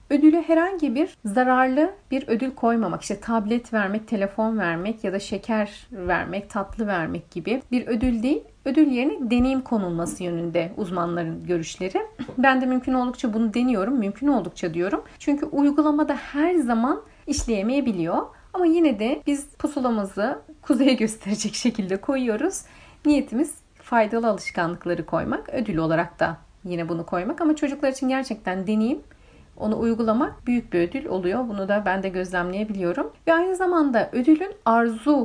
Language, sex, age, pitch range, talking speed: Turkish, female, 40-59, 195-275 Hz, 140 wpm